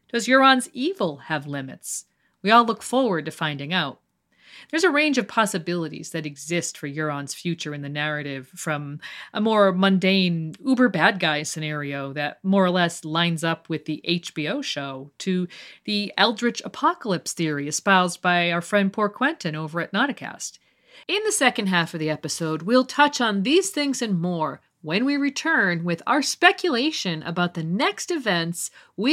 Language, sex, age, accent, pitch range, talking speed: English, female, 40-59, American, 155-250 Hz, 165 wpm